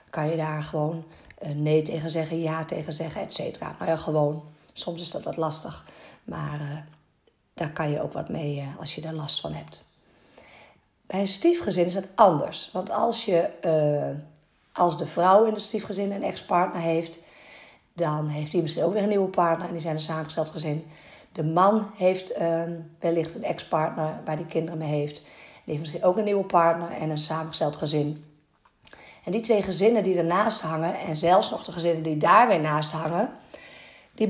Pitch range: 160-195 Hz